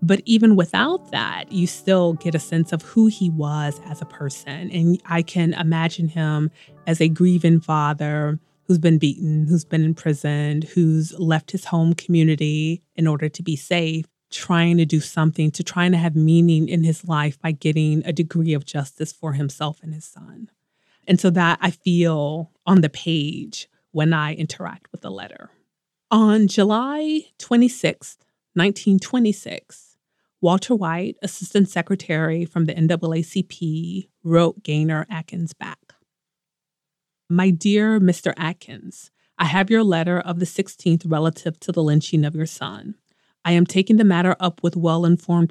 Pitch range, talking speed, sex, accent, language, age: 160-185 Hz, 155 wpm, female, American, English, 30-49